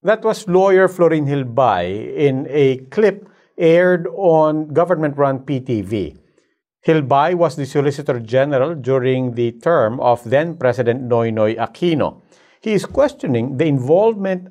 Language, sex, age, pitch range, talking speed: English, male, 50-69, 130-180 Hz, 120 wpm